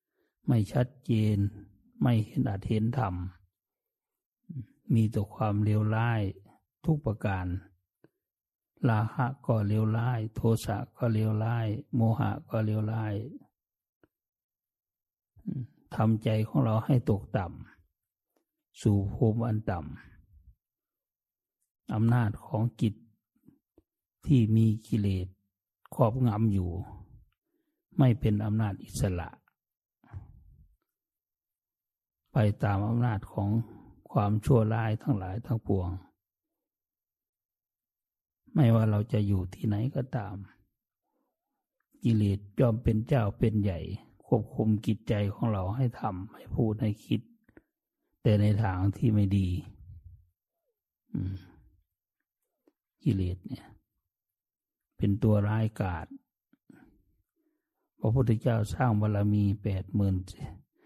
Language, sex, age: English, male, 60-79